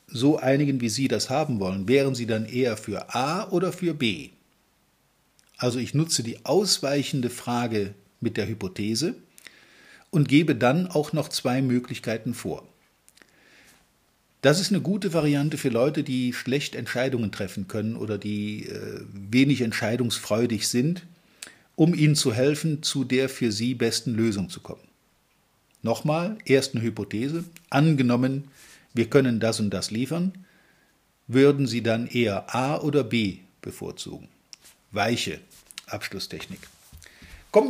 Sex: male